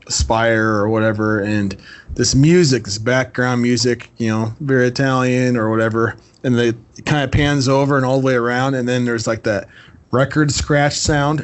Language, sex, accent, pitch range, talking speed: English, male, American, 105-135 Hz, 180 wpm